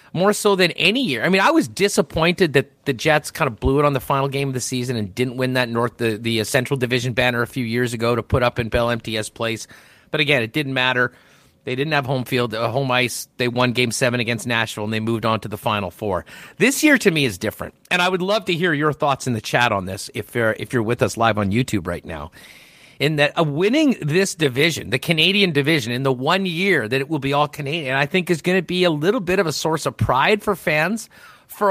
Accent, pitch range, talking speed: American, 120-180 Hz, 260 wpm